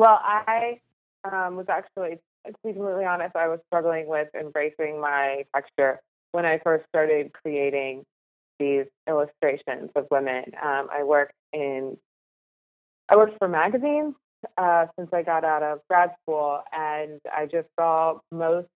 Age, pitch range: 30-49, 155-185 Hz